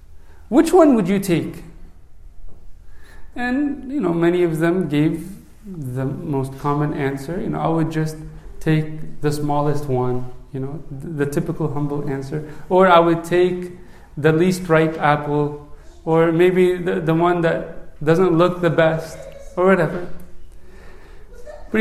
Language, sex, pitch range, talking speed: English, male, 145-185 Hz, 145 wpm